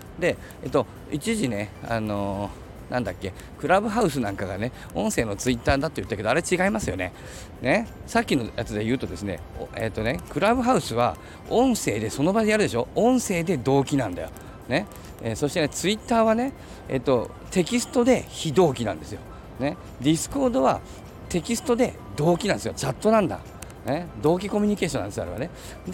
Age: 40-59